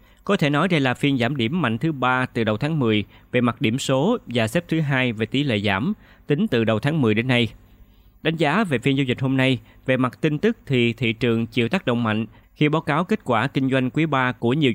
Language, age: Vietnamese, 20-39